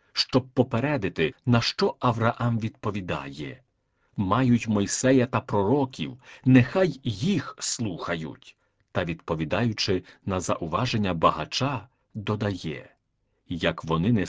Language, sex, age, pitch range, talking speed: Czech, male, 50-69, 100-135 Hz, 90 wpm